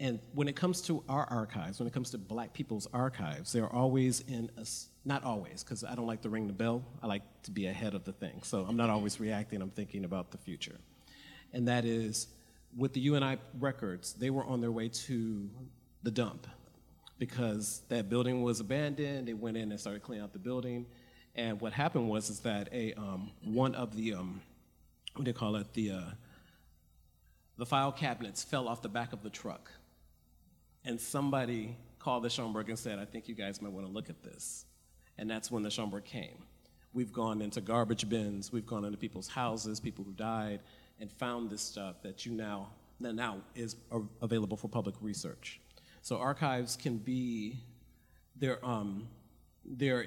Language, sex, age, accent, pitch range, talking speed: English, male, 40-59, American, 105-125 Hz, 195 wpm